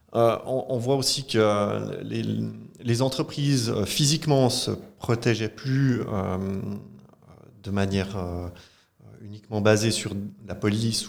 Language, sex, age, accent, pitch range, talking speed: French, male, 30-49, French, 100-125 Hz, 120 wpm